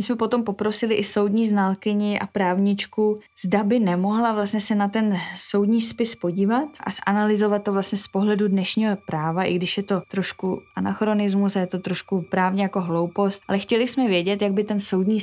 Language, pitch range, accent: Czech, 185-205 Hz, native